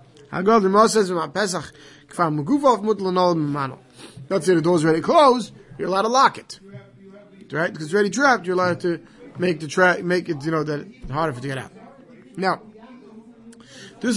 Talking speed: 145 wpm